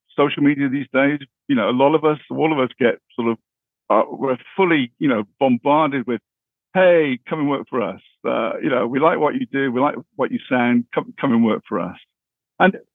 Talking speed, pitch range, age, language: 225 wpm, 130-200 Hz, 50-69, English